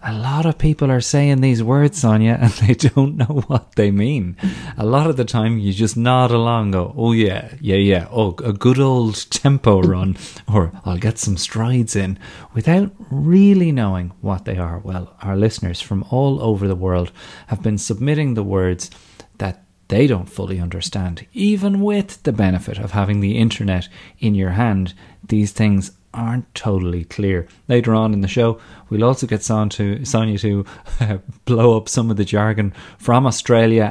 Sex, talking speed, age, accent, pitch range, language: male, 185 wpm, 30-49, Irish, 95-120 Hz, English